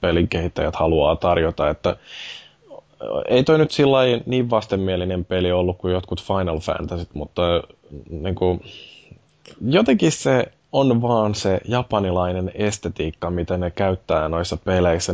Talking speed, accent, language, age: 125 wpm, native, Finnish, 20-39